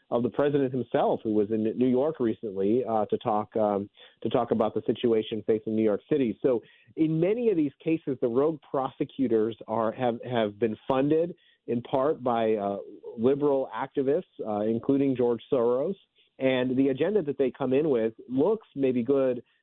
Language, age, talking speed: English, 40-59, 175 wpm